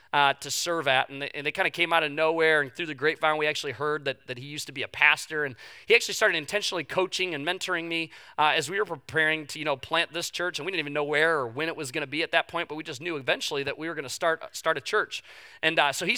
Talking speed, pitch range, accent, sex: 310 wpm, 130-165 Hz, American, male